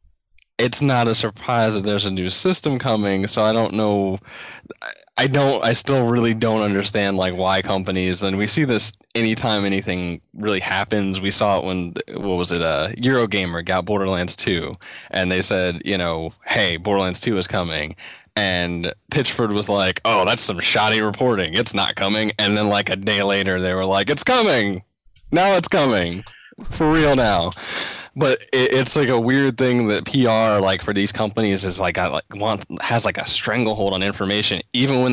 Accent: American